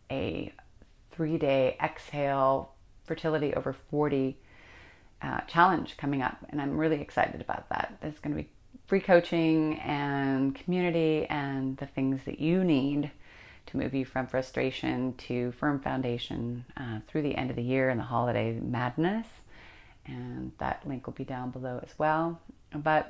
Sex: female